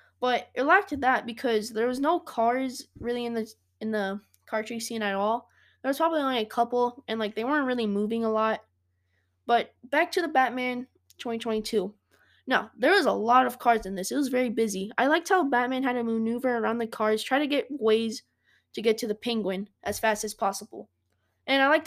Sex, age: female, 20-39